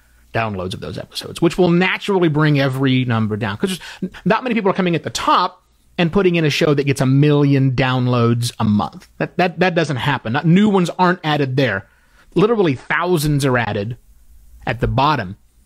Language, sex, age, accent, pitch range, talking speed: English, male, 30-49, American, 110-170 Hz, 195 wpm